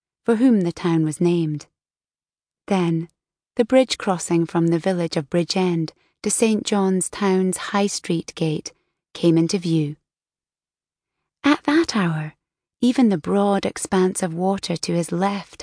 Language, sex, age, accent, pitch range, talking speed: English, female, 30-49, British, 165-205 Hz, 140 wpm